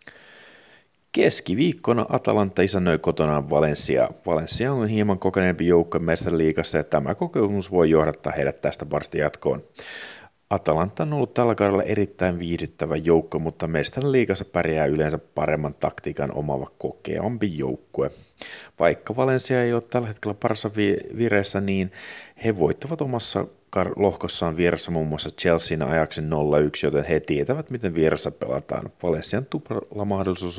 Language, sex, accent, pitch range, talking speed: Finnish, male, native, 80-105 Hz, 135 wpm